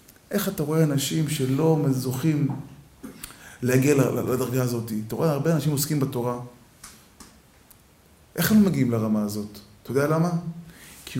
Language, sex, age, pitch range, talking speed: Hebrew, male, 20-39, 120-175 Hz, 130 wpm